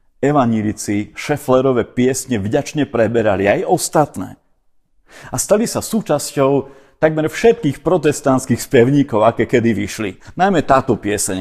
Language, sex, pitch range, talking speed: Slovak, male, 105-135 Hz, 105 wpm